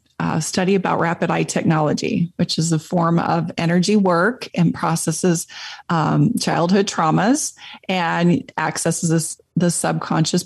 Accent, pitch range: American, 170-205 Hz